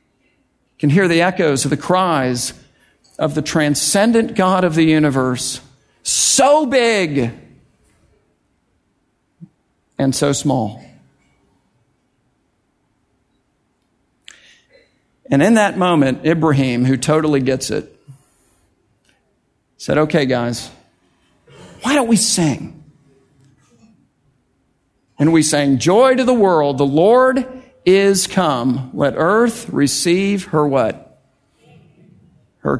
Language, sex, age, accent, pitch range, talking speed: English, male, 50-69, American, 130-170 Hz, 95 wpm